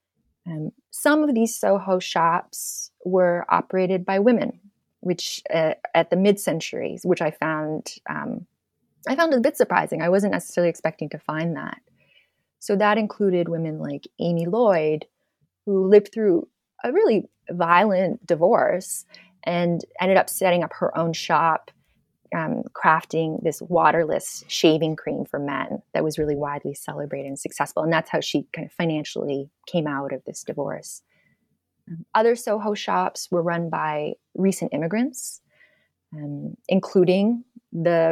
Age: 20-39